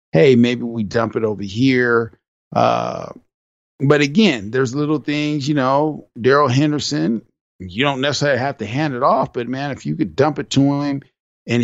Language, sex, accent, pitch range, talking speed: English, male, American, 115-145 Hz, 180 wpm